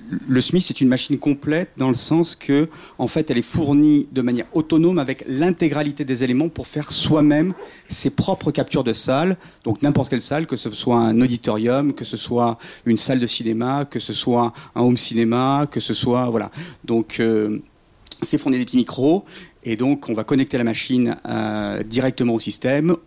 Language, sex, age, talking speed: French, male, 40-59, 190 wpm